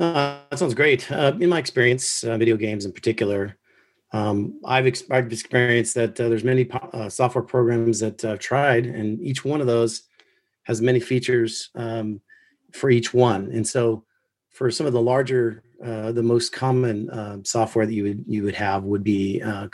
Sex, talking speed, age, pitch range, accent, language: male, 180 wpm, 40-59, 110-125 Hz, American, English